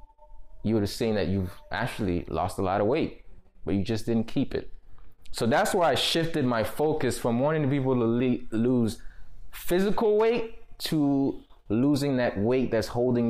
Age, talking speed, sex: 20-39, 175 wpm, male